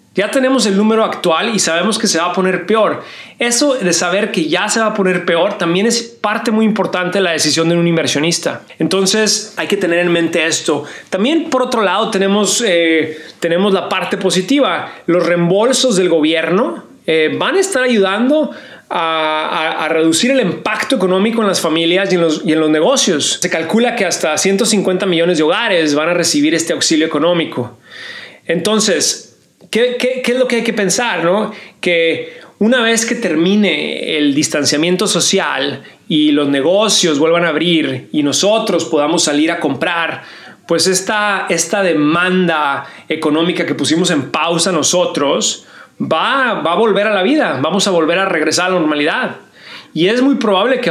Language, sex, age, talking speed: Spanish, male, 30-49, 180 wpm